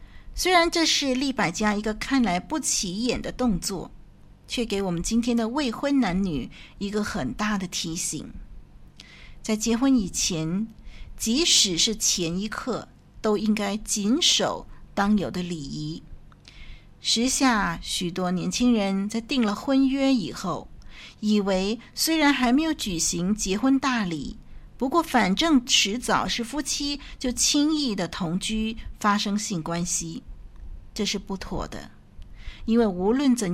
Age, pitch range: 50-69, 190-255 Hz